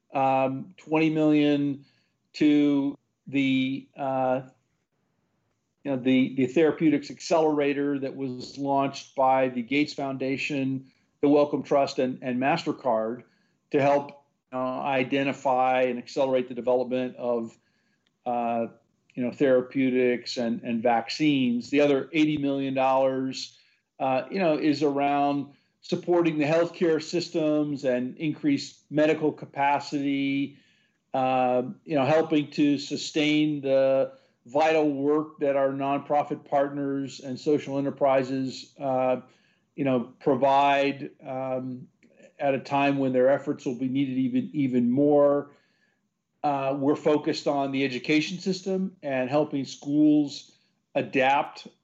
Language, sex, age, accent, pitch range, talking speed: English, male, 50-69, American, 130-150 Hz, 120 wpm